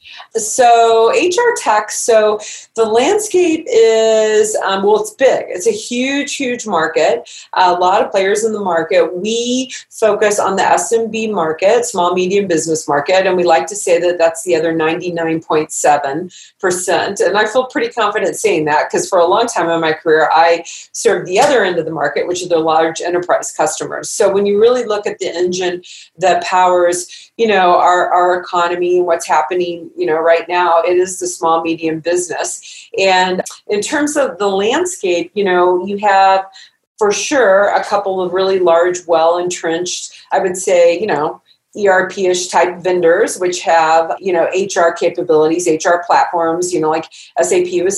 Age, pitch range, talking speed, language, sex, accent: 40-59, 175-220 Hz, 175 wpm, English, female, American